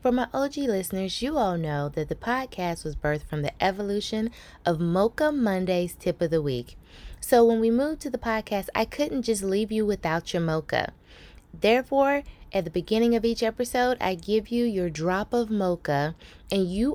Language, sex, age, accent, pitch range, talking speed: English, female, 20-39, American, 165-220 Hz, 190 wpm